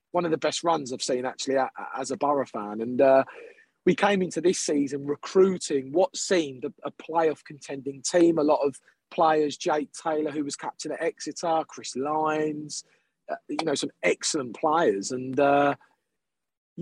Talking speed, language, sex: 170 wpm, English, male